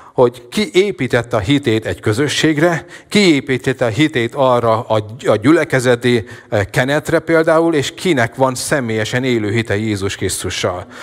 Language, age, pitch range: Hungarian, 40-59, 110-140 Hz